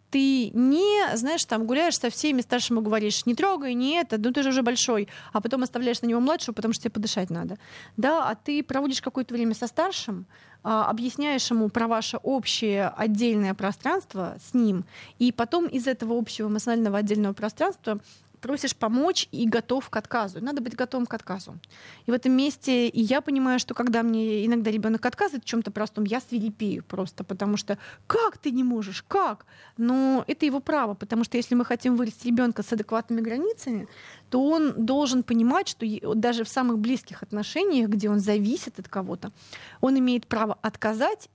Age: 20-39